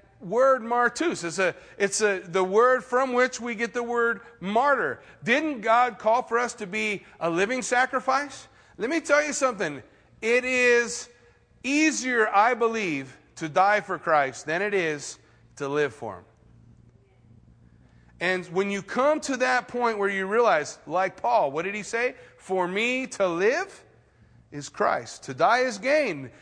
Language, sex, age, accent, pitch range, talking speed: English, male, 40-59, American, 190-255 Hz, 165 wpm